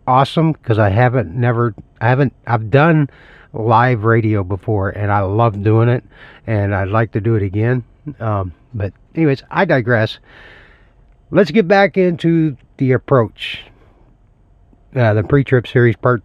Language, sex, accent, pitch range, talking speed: English, male, American, 105-135 Hz, 150 wpm